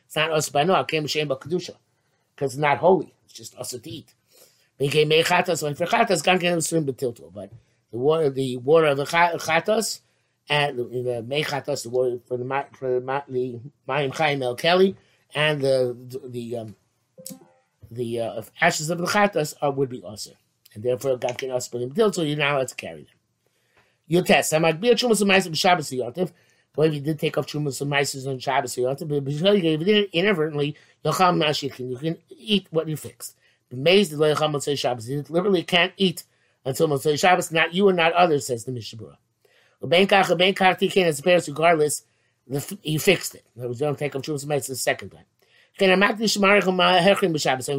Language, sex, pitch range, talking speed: English, male, 125-170 Hz, 190 wpm